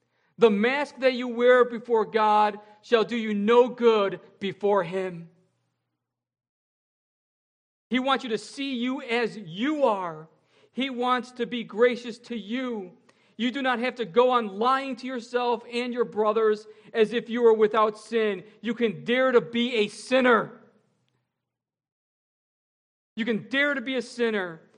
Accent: American